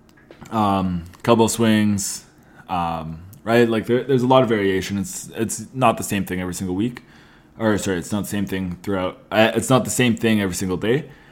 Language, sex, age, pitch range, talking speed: English, male, 20-39, 105-135 Hz, 205 wpm